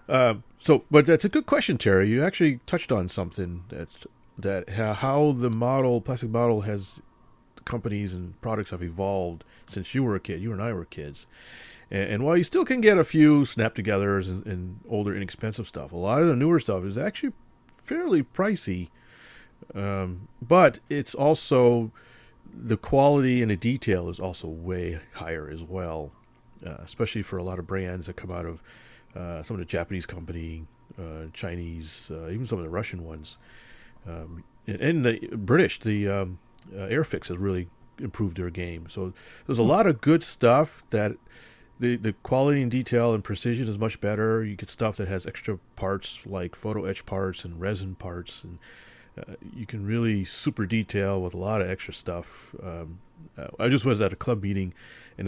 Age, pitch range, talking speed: 30-49, 90-120 Hz, 185 wpm